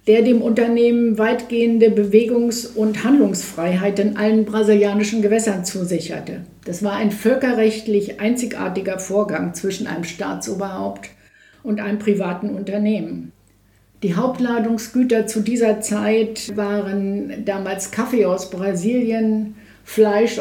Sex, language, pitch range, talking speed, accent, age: female, German, 200-230 Hz, 105 wpm, German, 60-79